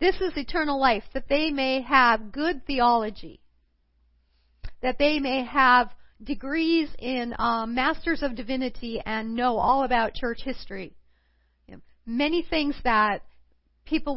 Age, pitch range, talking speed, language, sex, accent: 50-69, 210-265 Hz, 125 wpm, English, female, American